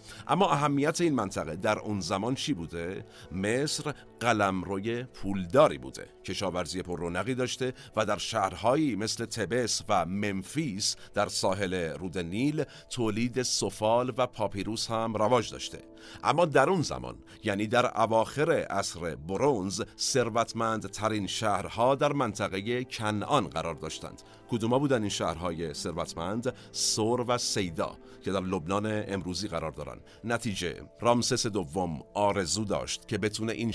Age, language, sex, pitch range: 50-69, Persian, male, 100-120 Hz